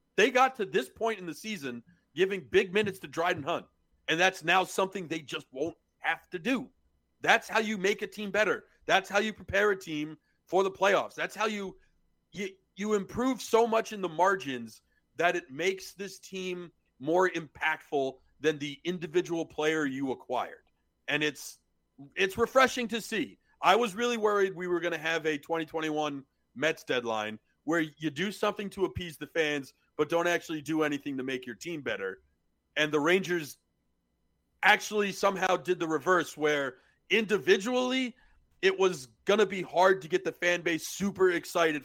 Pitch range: 150-195 Hz